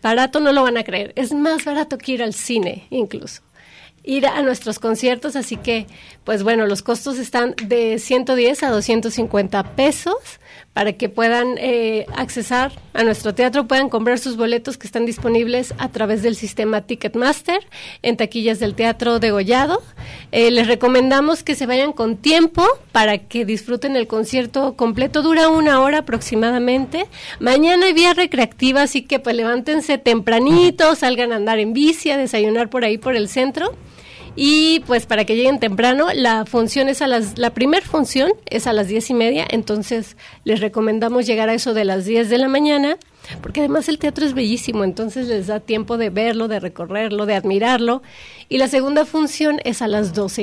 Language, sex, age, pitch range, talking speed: Spanish, female, 30-49, 225-275 Hz, 175 wpm